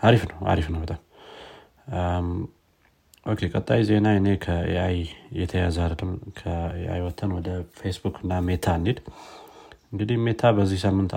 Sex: male